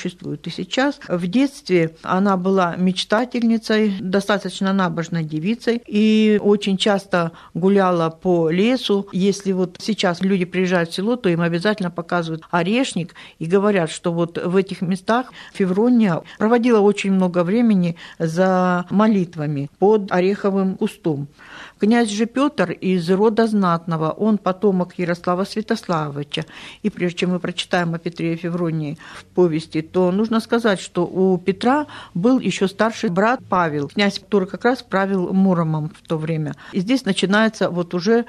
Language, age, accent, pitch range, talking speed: Russian, 50-69, native, 180-215 Hz, 145 wpm